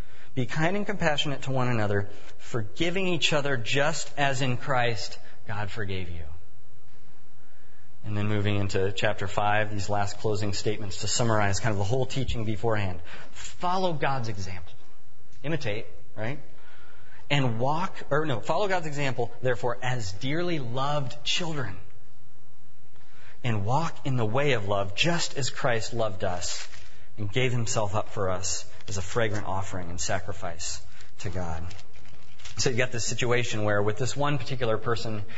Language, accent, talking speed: English, American, 150 wpm